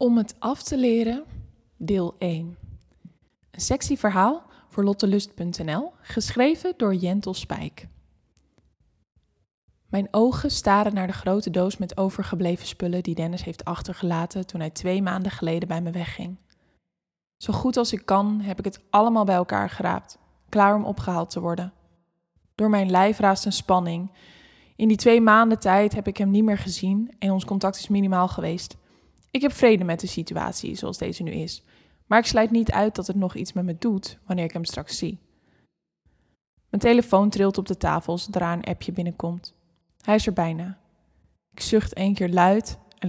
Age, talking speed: 10-29, 175 wpm